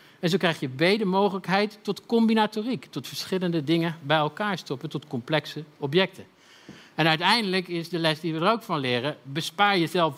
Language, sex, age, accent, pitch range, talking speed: Dutch, male, 50-69, Dutch, 135-185 Hz, 185 wpm